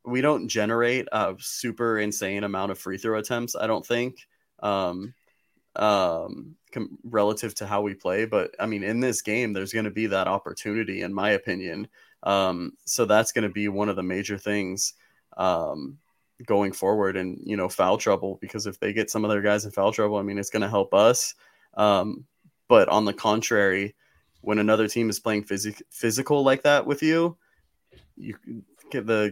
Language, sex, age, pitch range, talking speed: English, male, 20-39, 100-115 Hz, 190 wpm